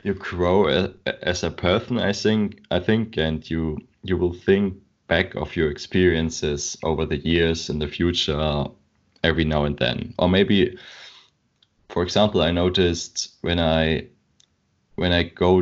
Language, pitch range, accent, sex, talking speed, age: English, 80-90 Hz, German, male, 155 wpm, 20-39